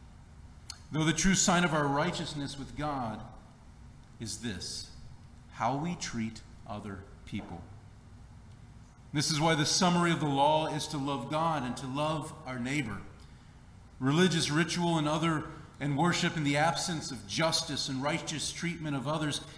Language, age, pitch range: English, 40-59, 120-165 Hz